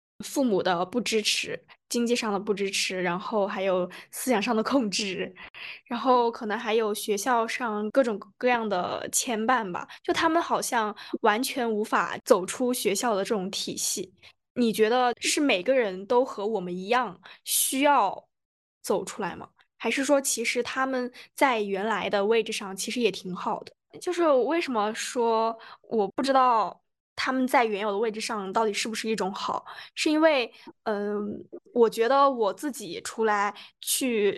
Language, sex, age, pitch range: Chinese, female, 10-29, 210-255 Hz